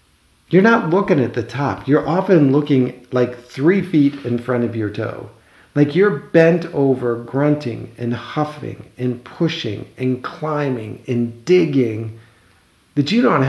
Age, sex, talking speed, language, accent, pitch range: 50-69, male, 145 wpm, English, American, 115-150 Hz